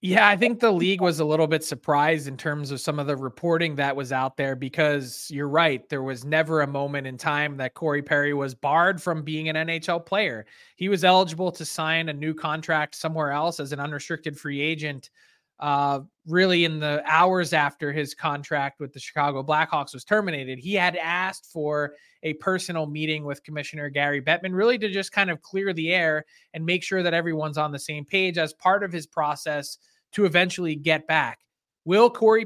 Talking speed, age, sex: 200 wpm, 20-39, male